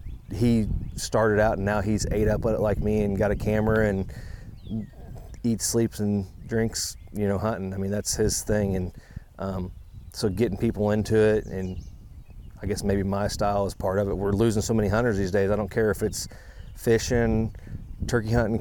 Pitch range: 95-110 Hz